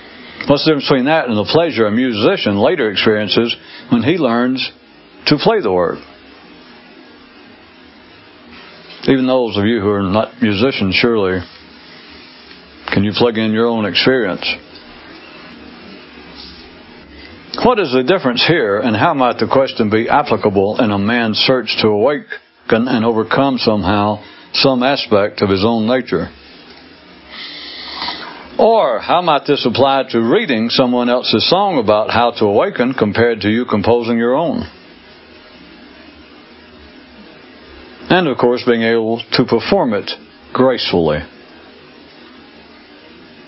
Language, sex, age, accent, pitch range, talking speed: English, male, 60-79, American, 105-130 Hz, 125 wpm